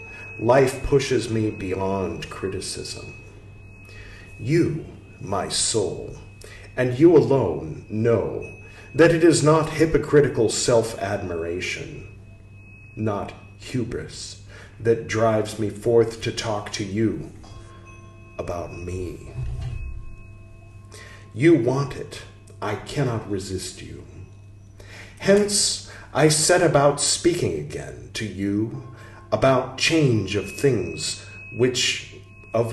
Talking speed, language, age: 95 wpm, English, 40-59